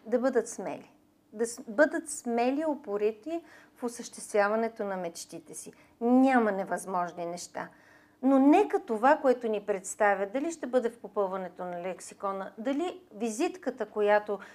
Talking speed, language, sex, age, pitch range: 130 wpm, Bulgarian, female, 40-59, 210-285 Hz